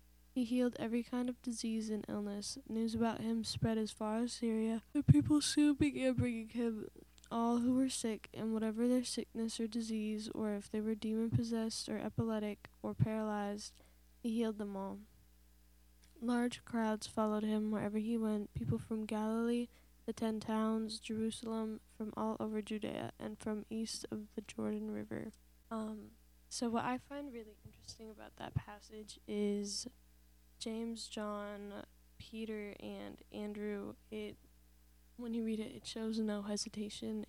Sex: female